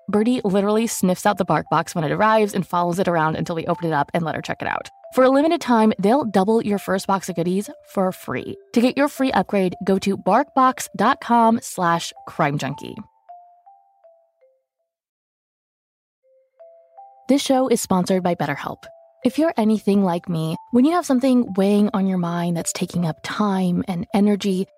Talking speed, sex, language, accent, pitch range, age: 175 wpm, female, English, American, 185-245 Hz, 20-39